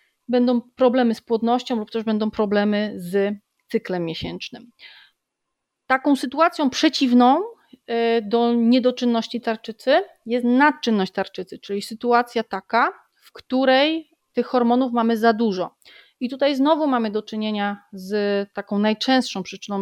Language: Polish